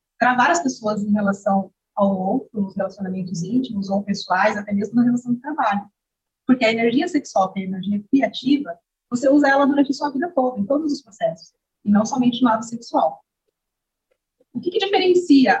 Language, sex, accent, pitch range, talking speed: Portuguese, female, Brazilian, 200-265 Hz, 185 wpm